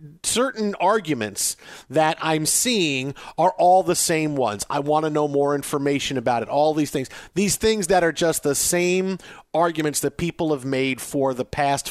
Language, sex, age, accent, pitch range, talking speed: English, male, 40-59, American, 145-200 Hz, 180 wpm